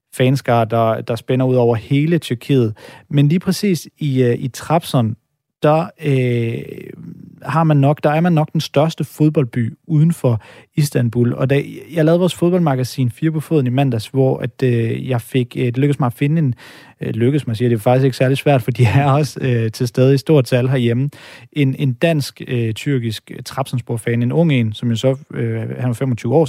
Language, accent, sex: Danish, native, male